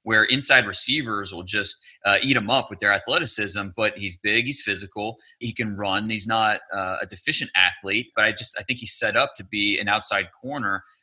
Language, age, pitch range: English, 20-39, 100-125 Hz